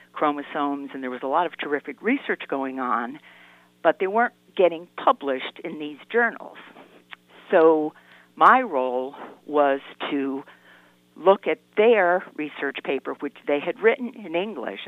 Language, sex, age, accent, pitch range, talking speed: English, female, 50-69, American, 125-170 Hz, 140 wpm